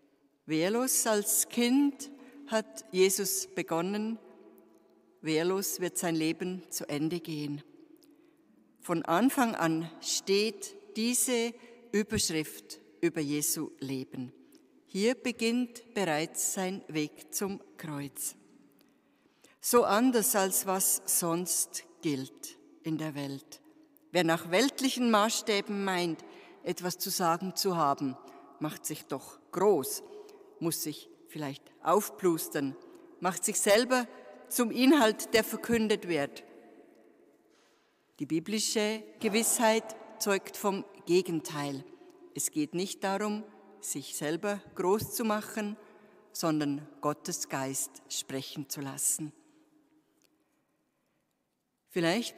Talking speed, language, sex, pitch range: 100 wpm, German, female, 165-245 Hz